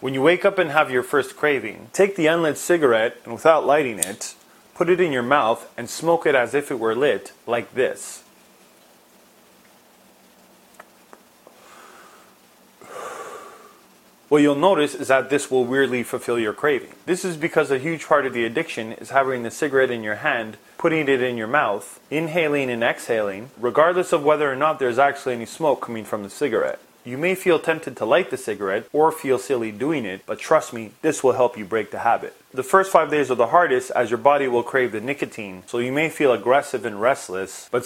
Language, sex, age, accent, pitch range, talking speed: English, male, 30-49, American, 120-155 Hz, 200 wpm